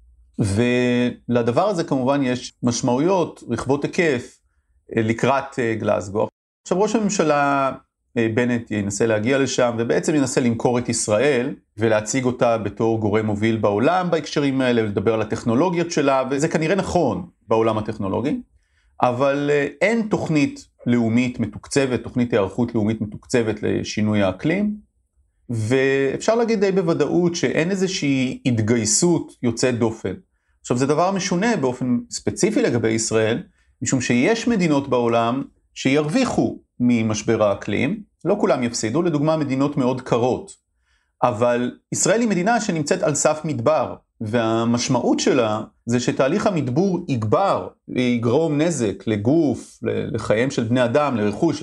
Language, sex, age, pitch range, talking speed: Hebrew, male, 30-49, 115-155 Hz, 120 wpm